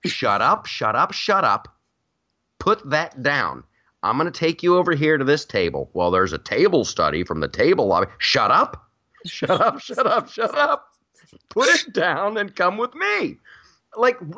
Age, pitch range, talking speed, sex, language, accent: 30-49, 115-175 Hz, 180 wpm, male, English, American